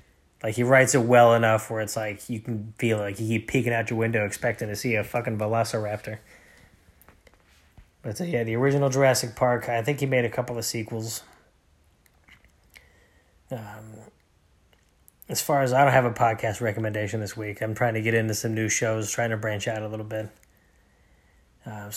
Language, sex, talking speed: English, male, 185 wpm